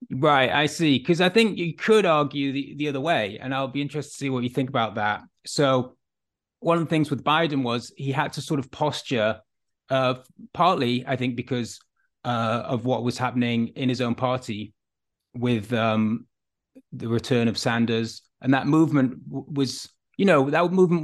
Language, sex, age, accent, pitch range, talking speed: English, male, 30-49, British, 120-145 Hz, 195 wpm